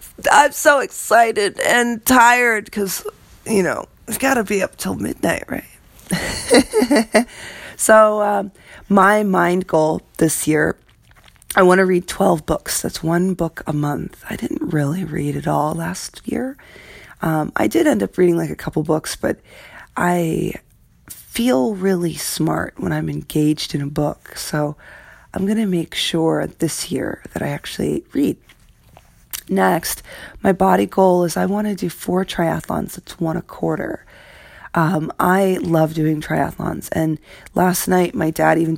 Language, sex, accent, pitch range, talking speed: English, female, American, 155-200 Hz, 155 wpm